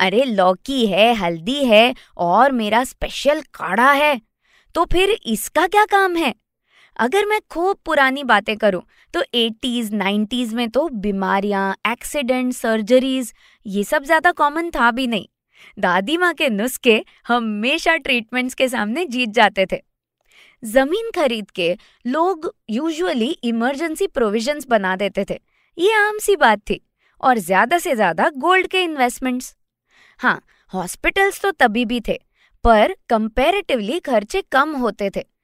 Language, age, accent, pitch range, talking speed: Hindi, 20-39, native, 220-315 Hz, 140 wpm